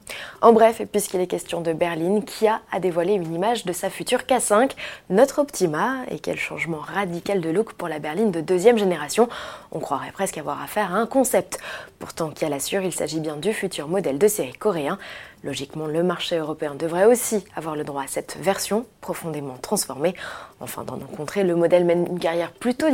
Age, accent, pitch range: 20-39, French, 165-215 Hz